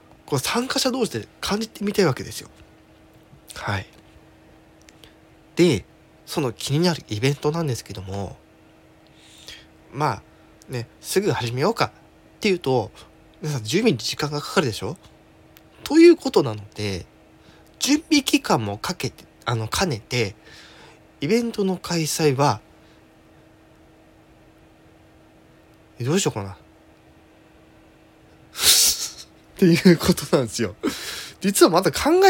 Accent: native